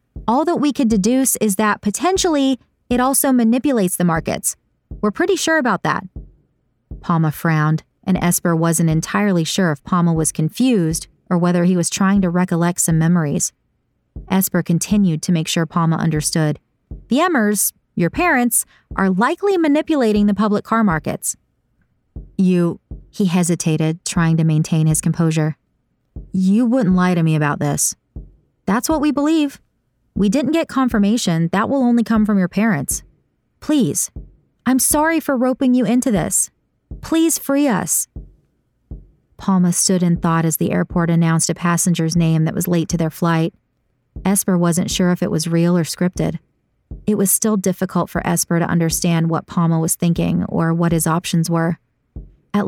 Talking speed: 160 wpm